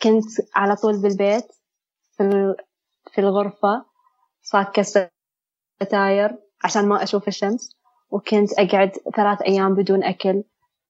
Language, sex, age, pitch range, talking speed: Arabic, female, 20-39, 195-215 Hz, 100 wpm